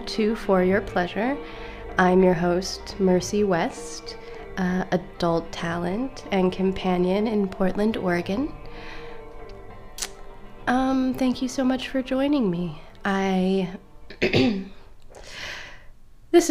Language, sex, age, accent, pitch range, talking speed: English, female, 20-39, American, 175-205 Hz, 100 wpm